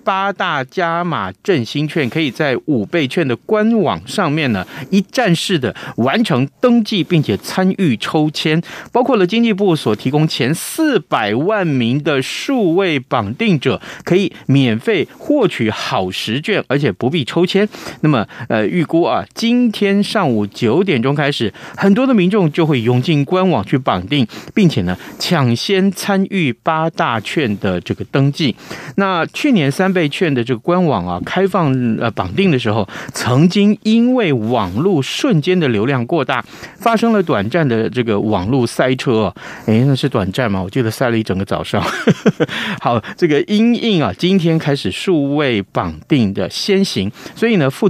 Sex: male